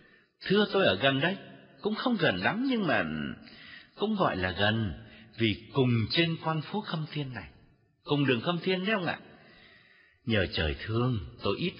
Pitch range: 120-190 Hz